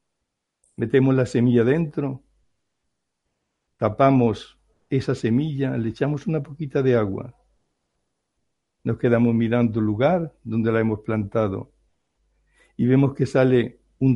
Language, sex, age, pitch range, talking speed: Spanish, male, 60-79, 115-140 Hz, 115 wpm